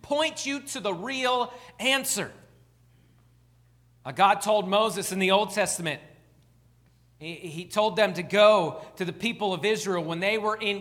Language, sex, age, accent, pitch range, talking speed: English, male, 40-59, American, 165-230 Hz, 150 wpm